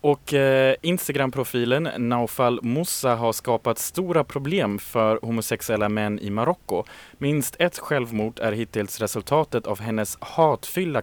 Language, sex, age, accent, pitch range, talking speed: Swedish, male, 20-39, Norwegian, 110-140 Hz, 125 wpm